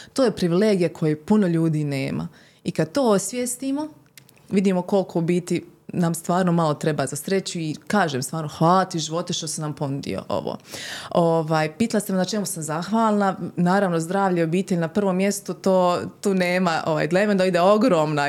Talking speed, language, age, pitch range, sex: 175 wpm, Croatian, 20-39, 160-205 Hz, female